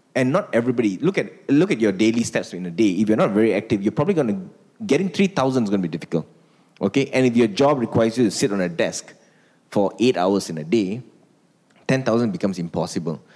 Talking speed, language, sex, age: 225 wpm, English, male, 20-39